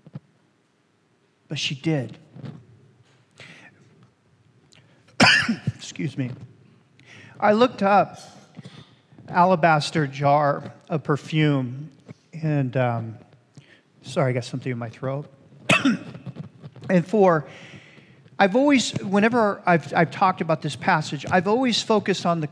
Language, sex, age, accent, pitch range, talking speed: English, male, 40-59, American, 135-180 Hz, 100 wpm